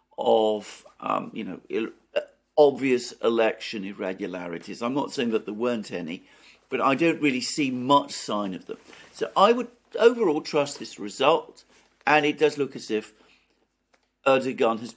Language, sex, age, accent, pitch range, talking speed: English, male, 50-69, British, 110-145 Hz, 155 wpm